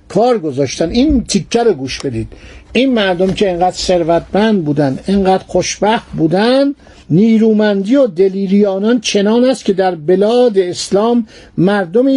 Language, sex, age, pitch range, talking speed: Persian, male, 50-69, 170-220 Hz, 125 wpm